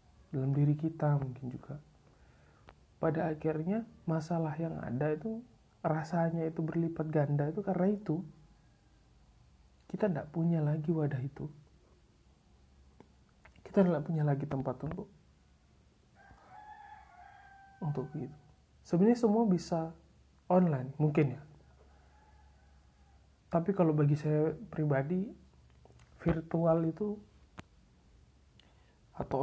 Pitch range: 130-165 Hz